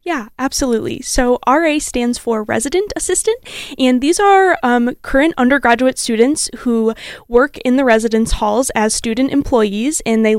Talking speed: 150 wpm